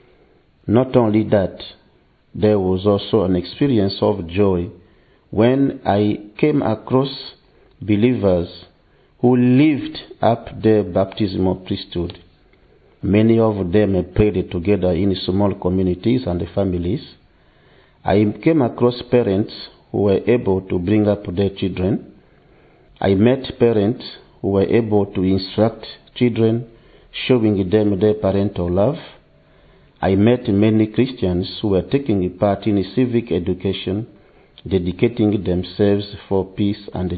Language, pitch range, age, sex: English, 95-115 Hz, 50-69, male